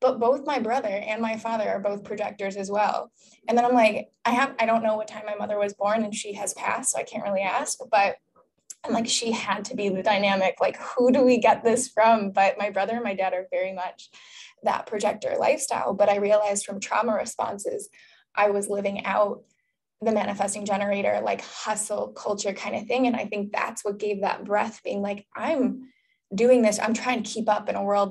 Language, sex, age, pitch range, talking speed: English, female, 10-29, 205-240 Hz, 220 wpm